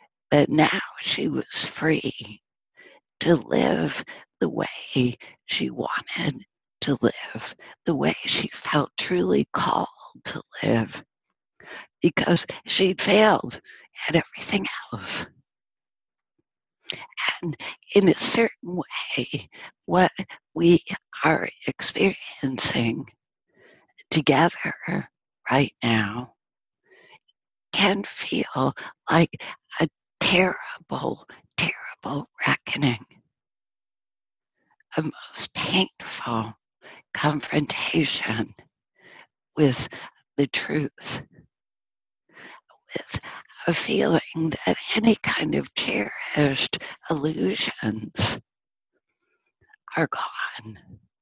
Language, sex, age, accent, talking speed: English, female, 60-79, American, 75 wpm